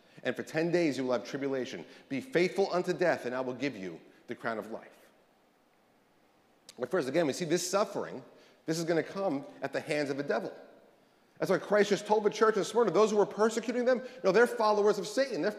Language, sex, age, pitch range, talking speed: English, male, 40-59, 160-215 Hz, 230 wpm